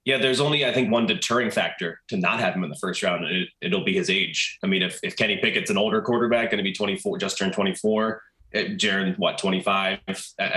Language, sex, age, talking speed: English, male, 20-39, 225 wpm